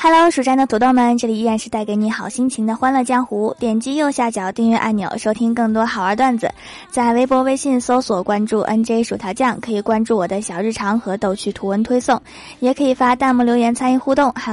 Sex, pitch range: female, 210-255 Hz